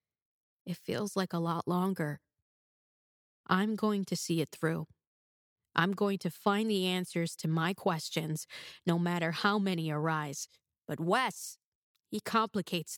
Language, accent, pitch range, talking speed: English, American, 160-200 Hz, 140 wpm